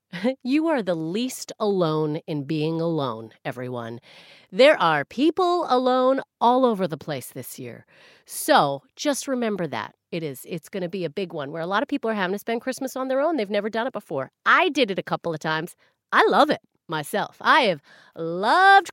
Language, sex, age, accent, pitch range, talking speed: English, female, 30-49, American, 185-265 Hz, 200 wpm